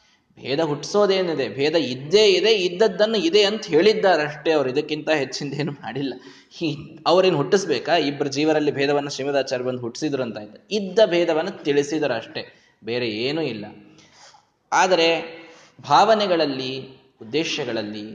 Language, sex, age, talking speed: Kannada, male, 20-39, 110 wpm